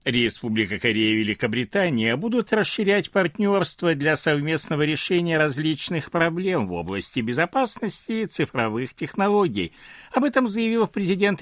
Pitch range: 115-190 Hz